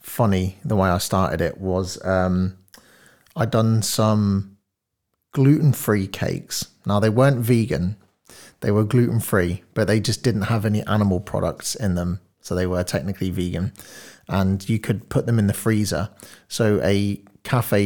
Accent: British